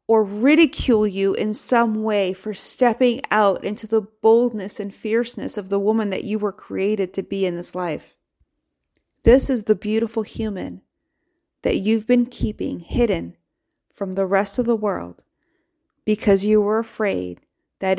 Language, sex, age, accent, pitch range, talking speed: English, female, 30-49, American, 185-225 Hz, 155 wpm